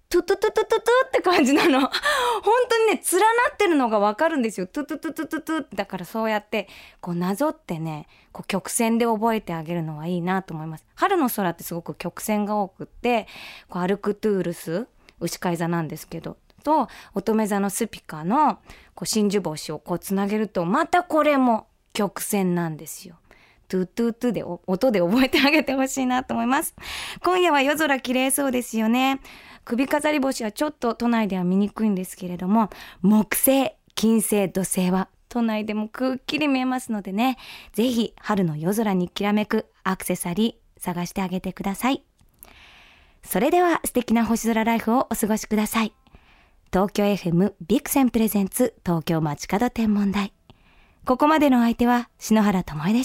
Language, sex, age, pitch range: Japanese, female, 20-39, 190-265 Hz